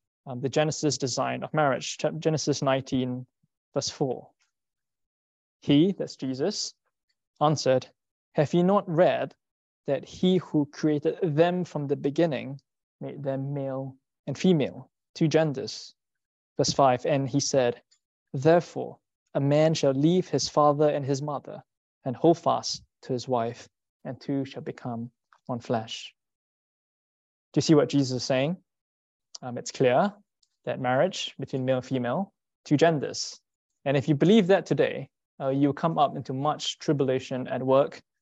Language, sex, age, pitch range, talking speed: English, male, 20-39, 130-155 Hz, 145 wpm